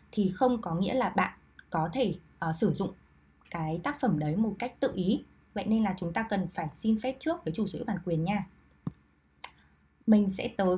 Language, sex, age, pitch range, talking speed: Vietnamese, female, 20-39, 165-245 Hz, 210 wpm